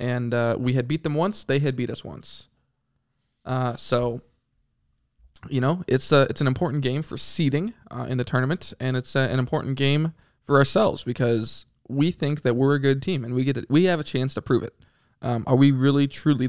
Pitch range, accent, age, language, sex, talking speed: 120-140 Hz, American, 20-39, English, male, 220 wpm